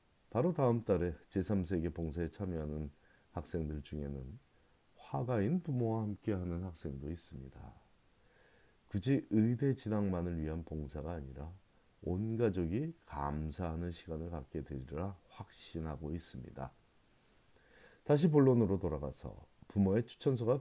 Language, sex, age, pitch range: Korean, male, 40-59, 80-110 Hz